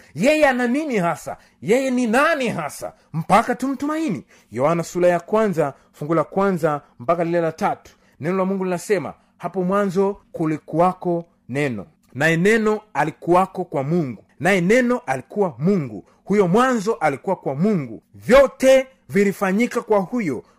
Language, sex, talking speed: Swahili, male, 135 wpm